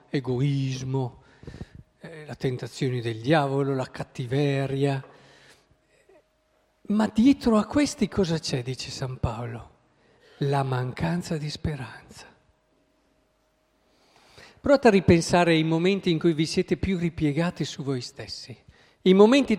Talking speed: 115 wpm